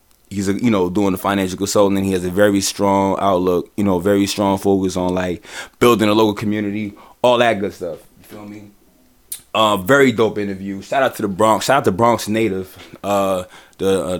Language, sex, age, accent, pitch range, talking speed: English, male, 20-39, American, 100-115 Hz, 210 wpm